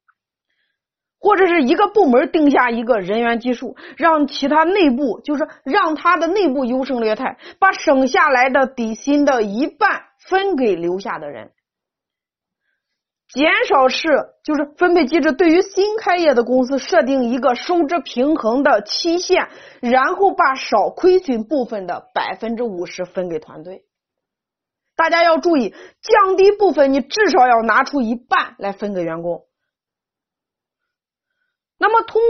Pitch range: 245-345 Hz